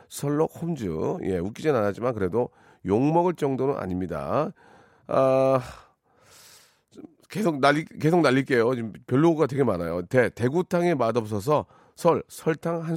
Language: Korean